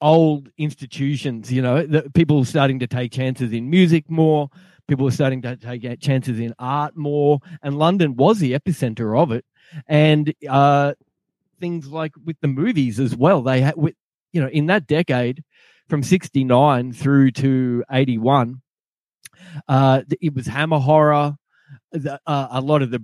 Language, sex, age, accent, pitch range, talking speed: English, male, 20-39, Australian, 125-150 Hz, 155 wpm